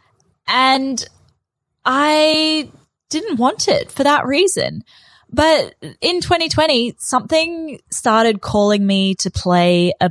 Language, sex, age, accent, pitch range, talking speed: English, female, 10-29, Australian, 180-240 Hz, 105 wpm